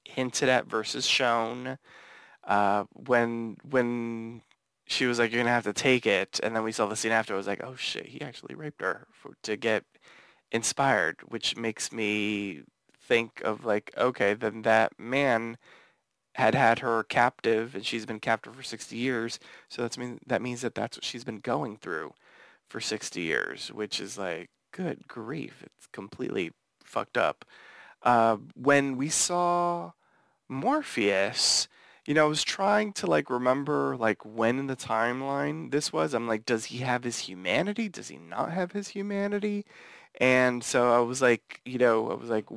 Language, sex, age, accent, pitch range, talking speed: English, male, 20-39, American, 110-135 Hz, 175 wpm